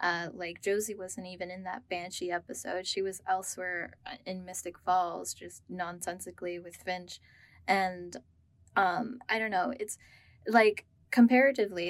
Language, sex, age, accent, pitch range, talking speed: English, female, 10-29, American, 185-220 Hz, 135 wpm